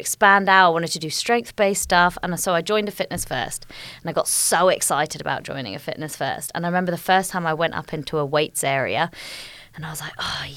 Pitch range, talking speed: 160-215 Hz, 245 wpm